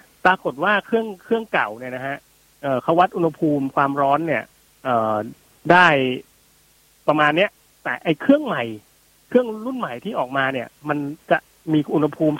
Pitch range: 135-175 Hz